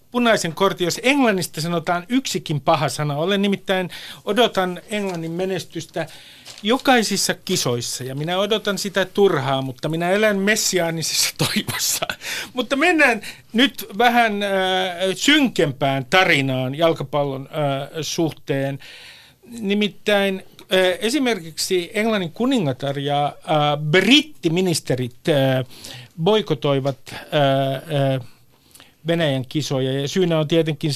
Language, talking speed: Finnish, 105 wpm